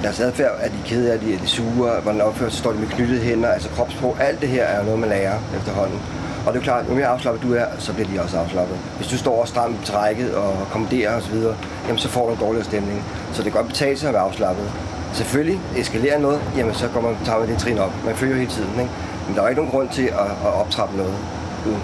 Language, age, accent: Danish, 30-49, native